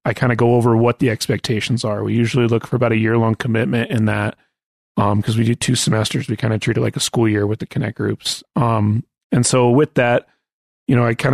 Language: English